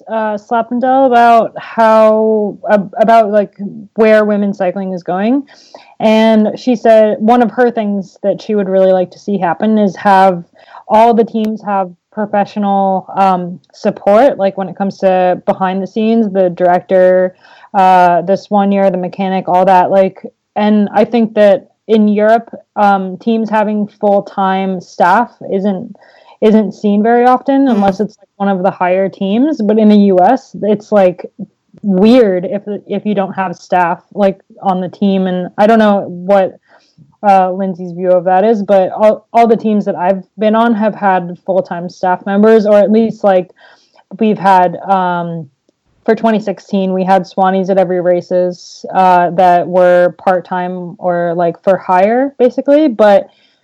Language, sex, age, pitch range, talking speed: English, female, 20-39, 185-220 Hz, 165 wpm